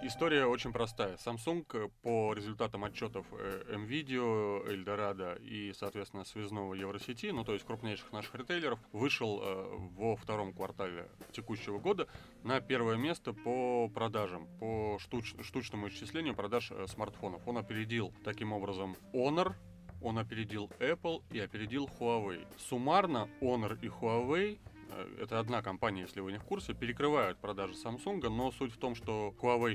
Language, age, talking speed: Russian, 30-49, 135 wpm